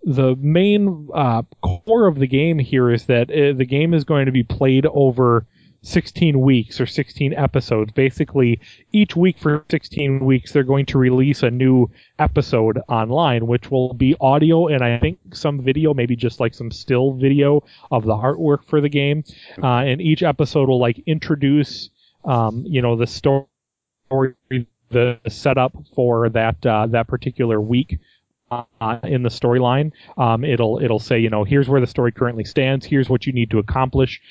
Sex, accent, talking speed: male, American, 175 wpm